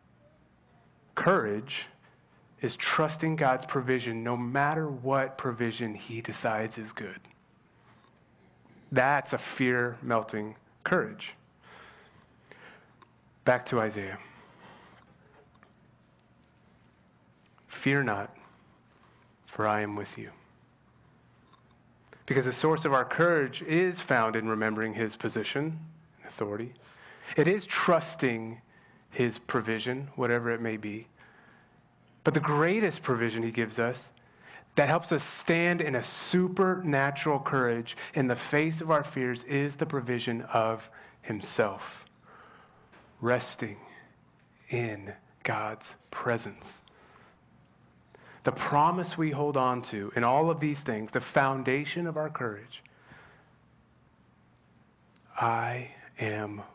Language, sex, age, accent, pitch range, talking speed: English, male, 30-49, American, 115-145 Hz, 105 wpm